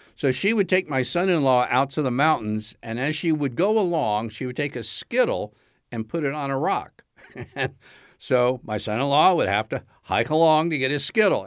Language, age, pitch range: English, 60-79, 115-150 Hz